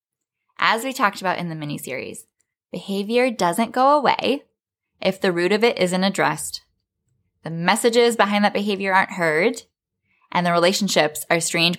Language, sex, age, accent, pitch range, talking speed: English, female, 10-29, American, 170-235 Hz, 155 wpm